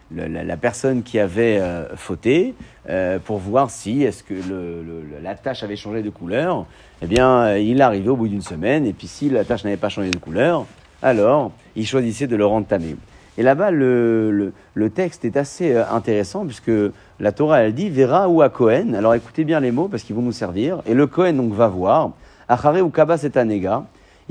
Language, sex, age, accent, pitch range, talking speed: French, male, 40-59, French, 100-135 Hz, 220 wpm